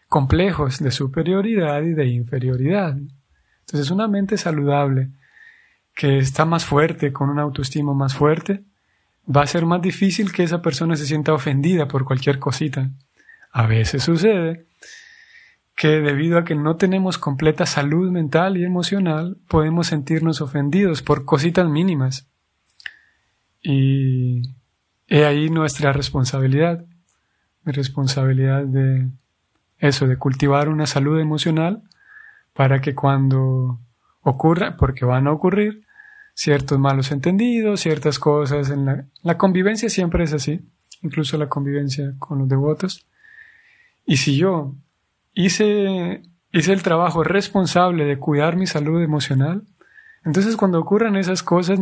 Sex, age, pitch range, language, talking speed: male, 30-49, 140-185 Hz, Spanish, 125 wpm